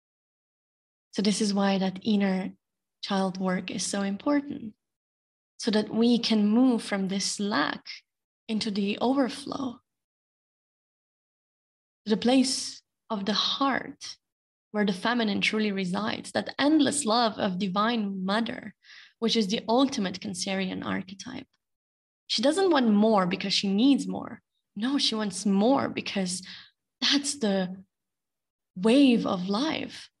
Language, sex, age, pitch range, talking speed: English, female, 20-39, 200-255 Hz, 125 wpm